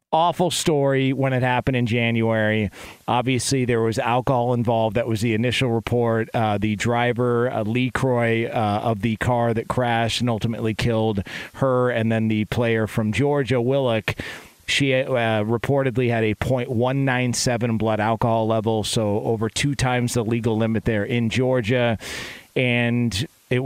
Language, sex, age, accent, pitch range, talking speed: English, male, 40-59, American, 115-135 Hz, 155 wpm